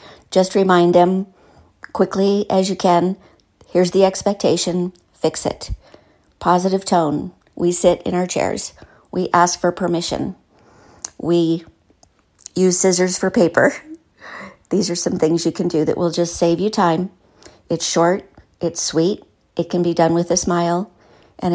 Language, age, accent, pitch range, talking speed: English, 50-69, American, 165-185 Hz, 150 wpm